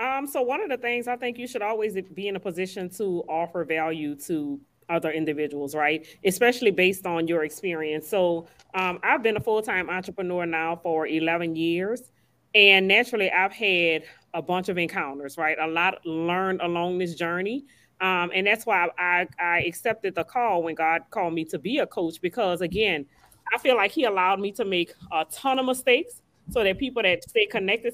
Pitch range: 165-200 Hz